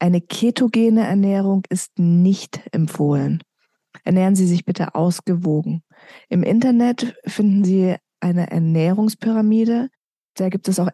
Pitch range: 180-205 Hz